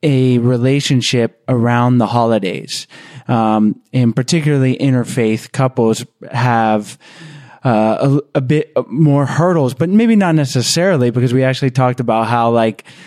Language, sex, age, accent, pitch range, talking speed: English, male, 20-39, American, 120-145 Hz, 130 wpm